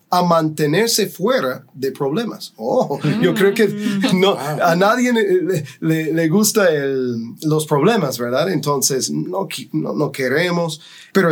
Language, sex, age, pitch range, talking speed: English, male, 30-49, 140-190 Hz, 135 wpm